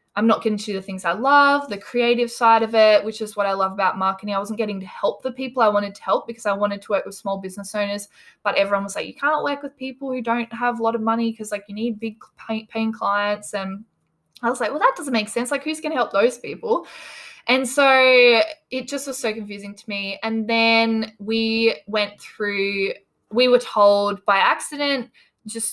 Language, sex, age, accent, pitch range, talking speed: English, female, 10-29, Australian, 185-230 Hz, 230 wpm